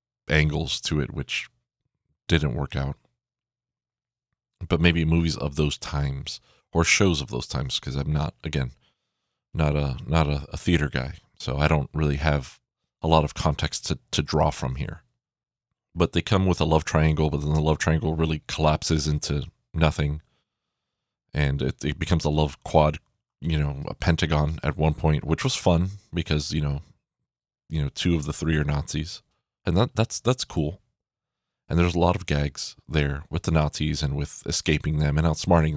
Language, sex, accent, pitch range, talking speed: English, male, American, 75-85 Hz, 180 wpm